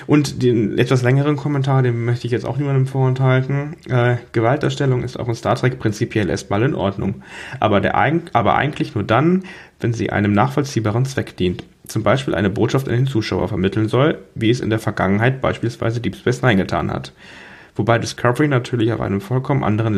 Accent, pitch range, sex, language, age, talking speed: German, 110-135 Hz, male, German, 10-29, 185 wpm